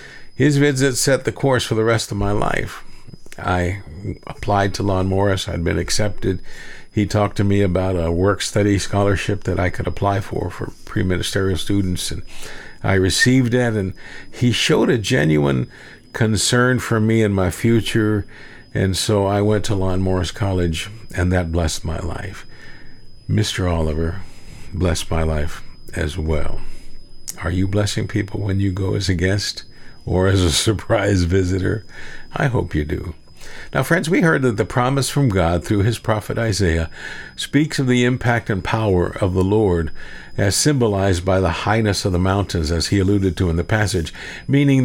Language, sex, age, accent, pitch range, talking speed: English, male, 50-69, American, 90-120 Hz, 170 wpm